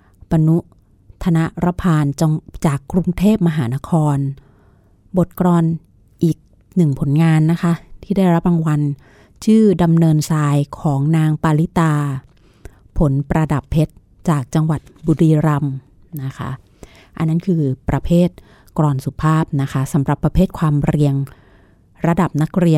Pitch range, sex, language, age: 135-165 Hz, female, Thai, 30-49